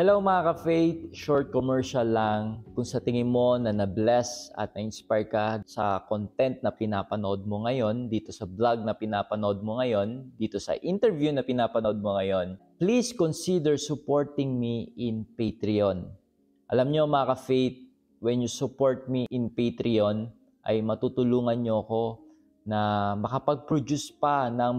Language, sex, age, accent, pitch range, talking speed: Filipino, male, 20-39, native, 105-130 Hz, 145 wpm